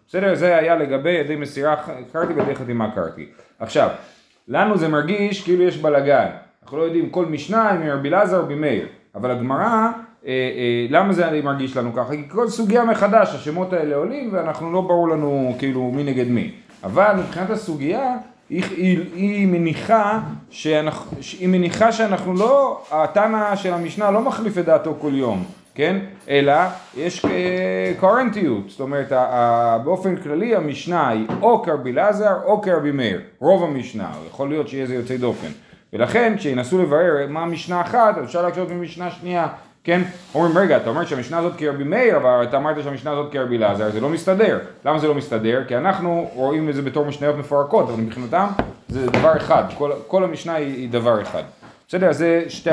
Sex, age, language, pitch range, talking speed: male, 30-49, Hebrew, 140-185 Hz, 170 wpm